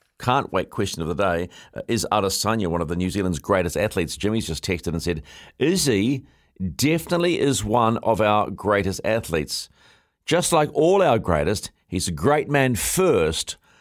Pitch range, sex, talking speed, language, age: 90-120 Hz, male, 170 wpm, English, 50-69